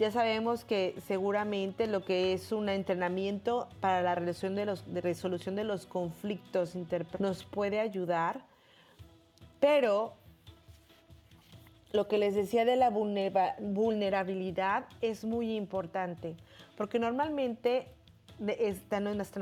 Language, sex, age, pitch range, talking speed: Spanish, female, 30-49, 175-205 Hz, 100 wpm